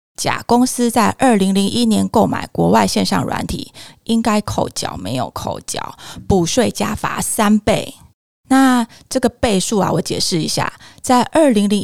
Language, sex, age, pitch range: Chinese, female, 20-39, 195-240 Hz